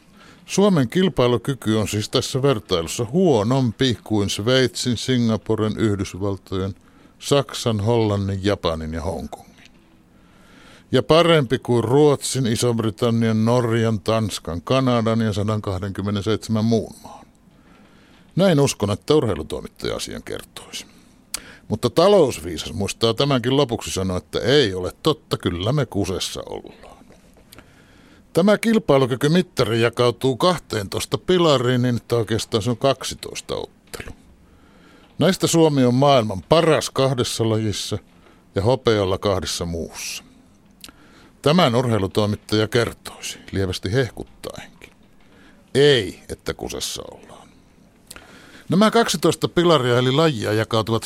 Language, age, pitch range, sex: Finnish, 60-79, 105-135 Hz, male